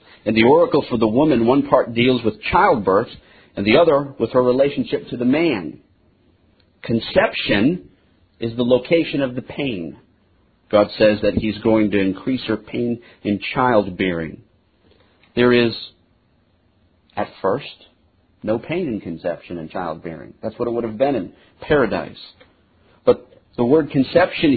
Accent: American